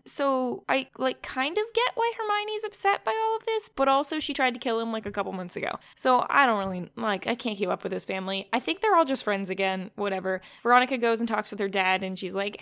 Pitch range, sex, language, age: 205-265 Hz, female, English, 10-29